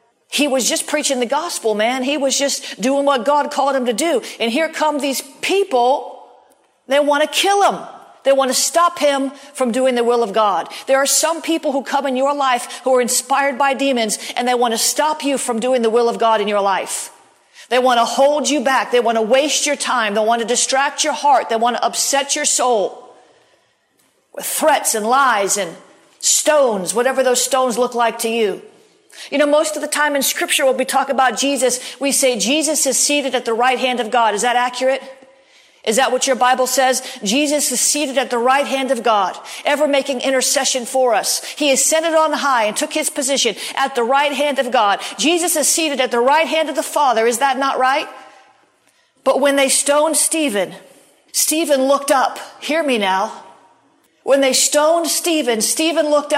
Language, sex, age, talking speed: English, female, 40-59, 210 wpm